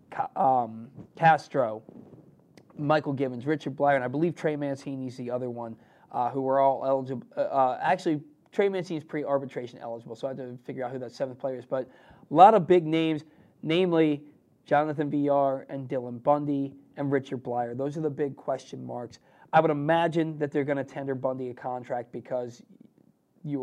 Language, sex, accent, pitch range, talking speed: English, male, American, 135-160 Hz, 185 wpm